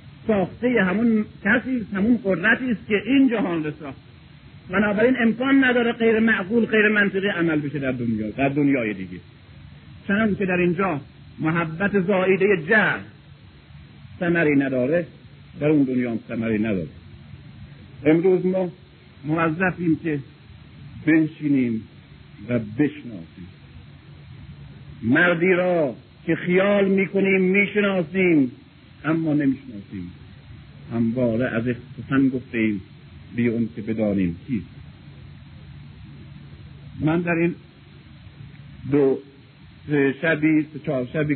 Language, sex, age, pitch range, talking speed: Persian, male, 50-69, 125-185 Hz, 100 wpm